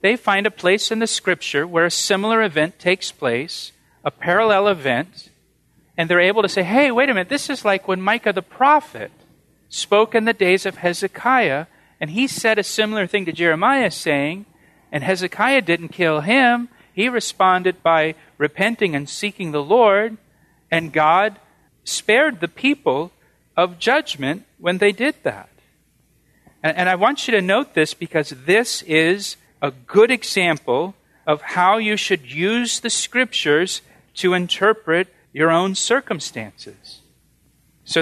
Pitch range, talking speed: 165-220 Hz, 155 wpm